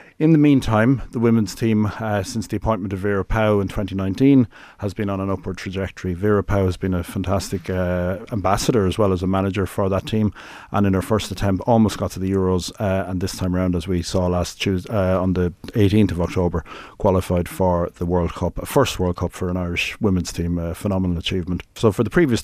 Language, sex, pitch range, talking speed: English, male, 90-105 Hz, 225 wpm